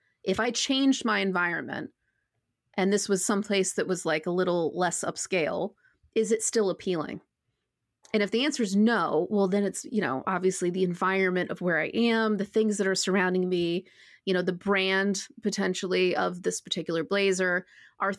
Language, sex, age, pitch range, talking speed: English, female, 30-49, 175-215 Hz, 180 wpm